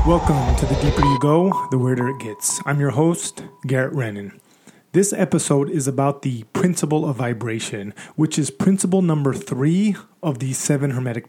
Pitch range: 130-160 Hz